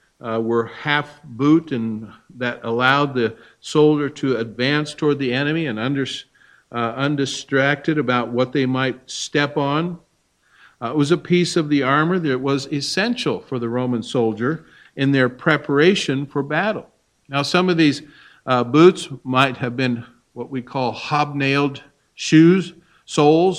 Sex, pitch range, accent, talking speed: male, 125-150 Hz, American, 150 wpm